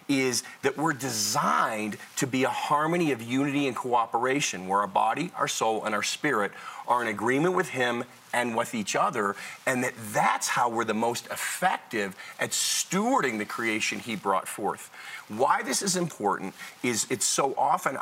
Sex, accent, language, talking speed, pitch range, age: male, American, English, 175 wpm, 105-140 Hz, 40-59